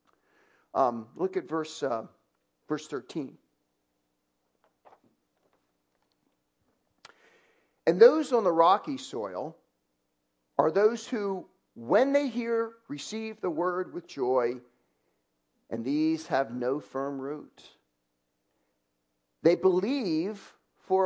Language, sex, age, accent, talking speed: English, male, 40-59, American, 95 wpm